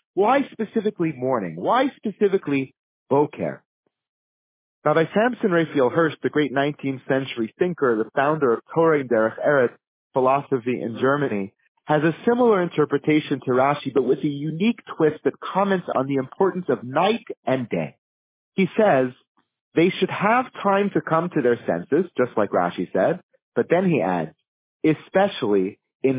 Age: 40-59